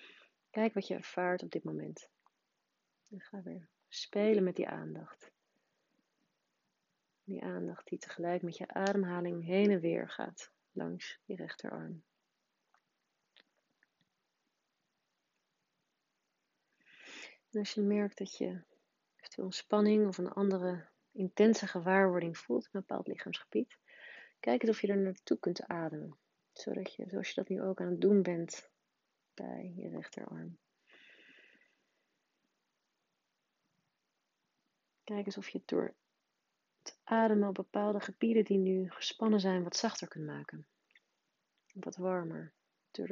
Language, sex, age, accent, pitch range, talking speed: Dutch, female, 30-49, Dutch, 175-205 Hz, 125 wpm